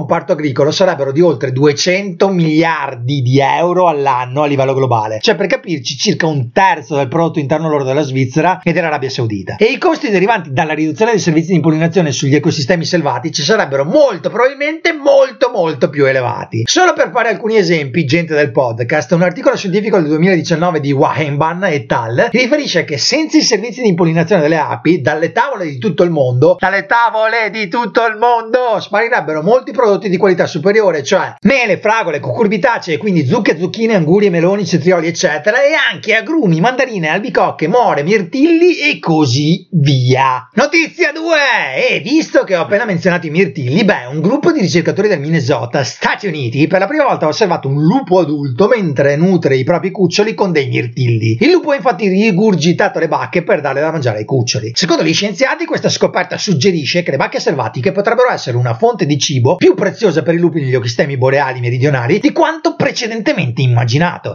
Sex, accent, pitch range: male, native, 150-220 Hz